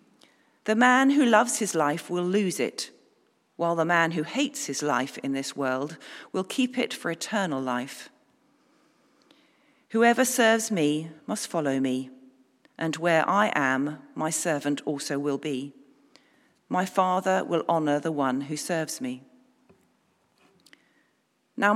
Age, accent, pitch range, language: 40-59, British, 145-230 Hz, English